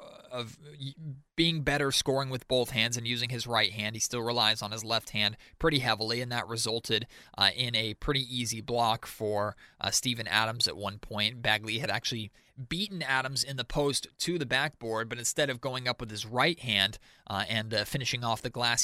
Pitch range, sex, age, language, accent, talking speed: 110-135 Hz, male, 20-39, English, American, 205 wpm